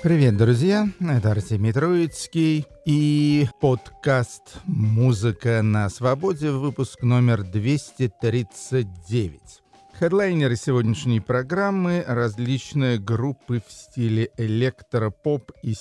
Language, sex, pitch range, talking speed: Russian, male, 105-135 Hz, 85 wpm